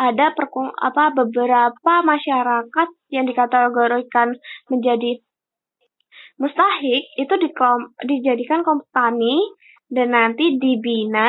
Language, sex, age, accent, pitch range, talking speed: Indonesian, female, 20-39, native, 255-310 Hz, 85 wpm